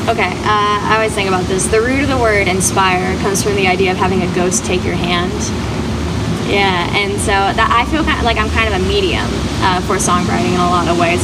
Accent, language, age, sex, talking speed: American, English, 10-29, female, 245 wpm